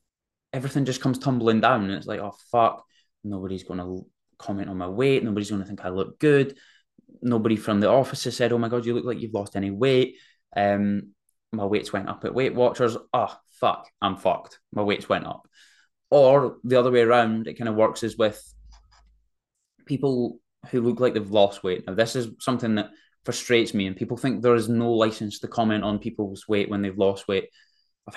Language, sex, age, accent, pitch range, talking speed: English, male, 20-39, British, 100-120 Hz, 210 wpm